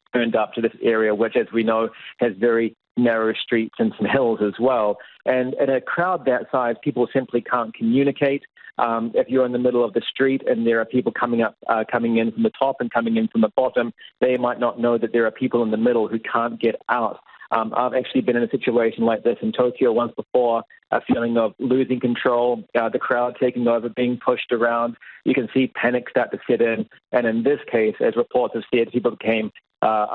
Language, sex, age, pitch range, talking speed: English, male, 40-59, 115-130 Hz, 230 wpm